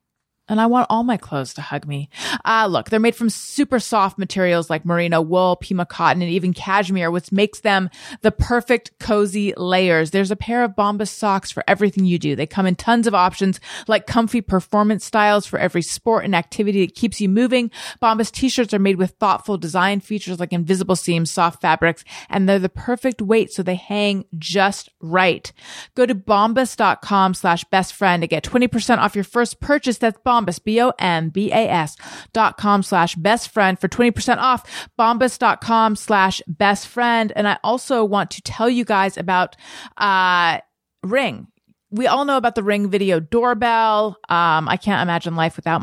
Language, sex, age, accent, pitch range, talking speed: English, female, 30-49, American, 185-225 Hz, 185 wpm